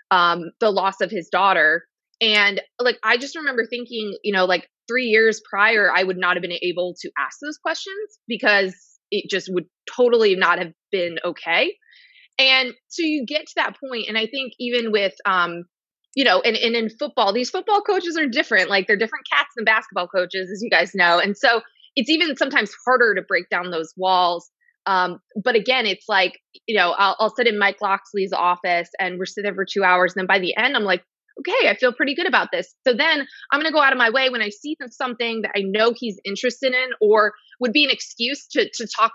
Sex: female